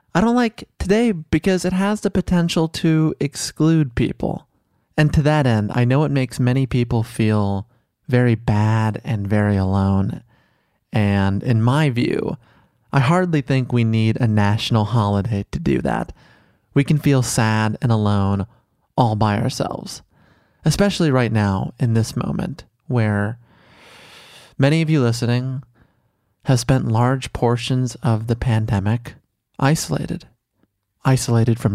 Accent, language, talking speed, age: American, English, 140 wpm, 30-49